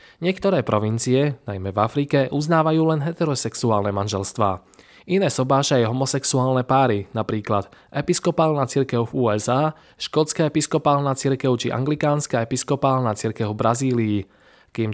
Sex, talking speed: male, 115 wpm